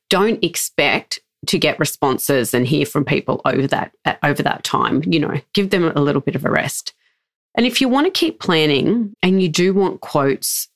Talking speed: 200 wpm